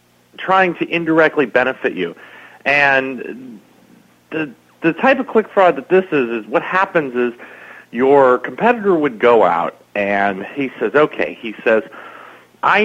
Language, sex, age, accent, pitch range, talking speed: English, male, 40-59, American, 120-170 Hz, 145 wpm